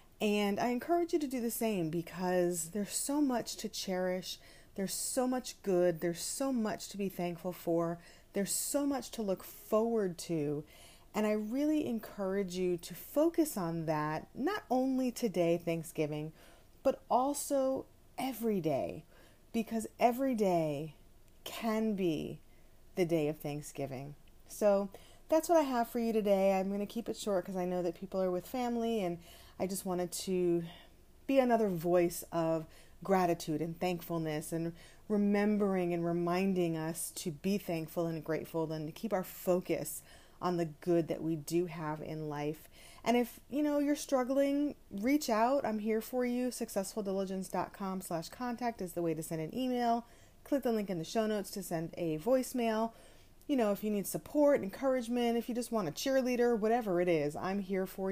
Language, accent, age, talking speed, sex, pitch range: English, American, 30-49, 175 wpm, female, 170-235 Hz